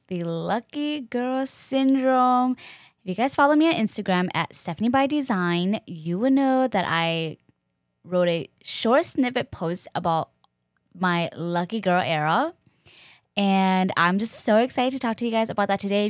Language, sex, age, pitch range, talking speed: English, female, 10-29, 170-230 Hz, 160 wpm